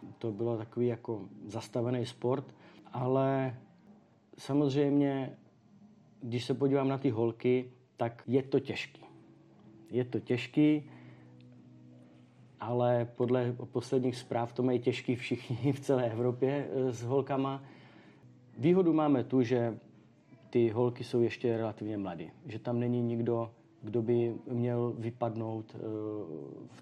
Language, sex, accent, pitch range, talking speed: Czech, male, native, 110-125 Hz, 120 wpm